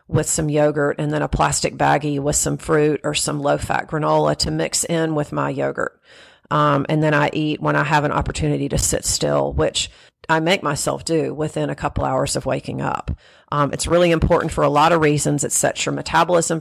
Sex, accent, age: female, American, 40-59